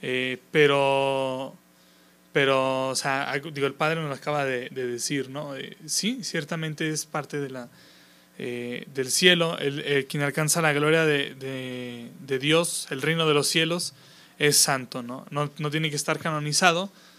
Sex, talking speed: male, 170 wpm